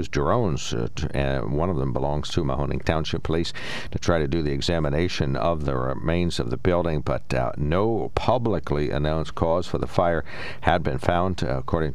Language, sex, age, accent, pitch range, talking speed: English, male, 60-79, American, 75-95 Hz, 190 wpm